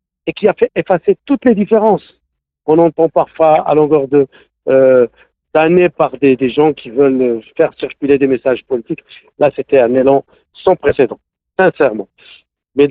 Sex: male